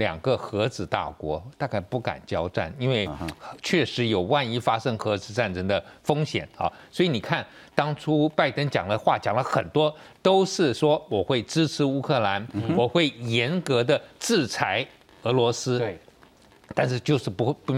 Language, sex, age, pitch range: Chinese, male, 50-69, 115-150 Hz